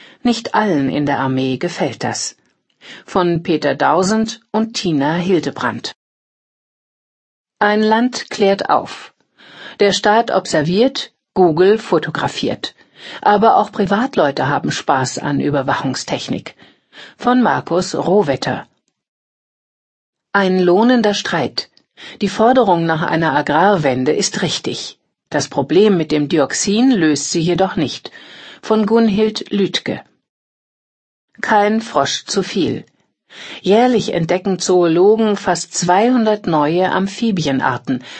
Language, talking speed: German, 100 wpm